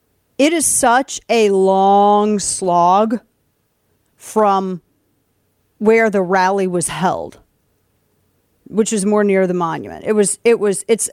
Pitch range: 190-240 Hz